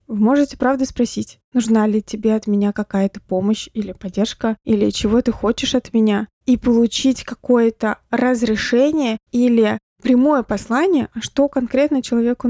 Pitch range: 220-255 Hz